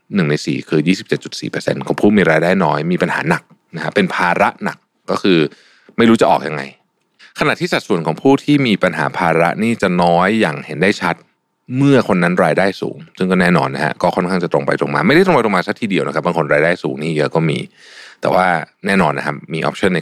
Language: Thai